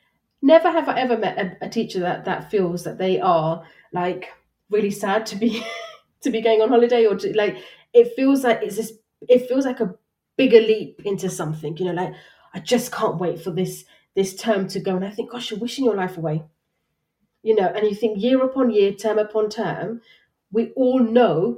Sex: female